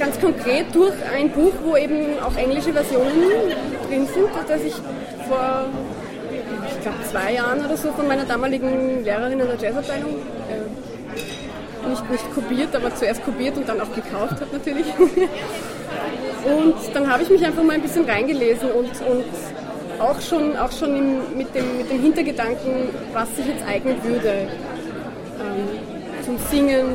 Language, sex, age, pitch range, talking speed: German, female, 20-39, 240-285 Hz, 160 wpm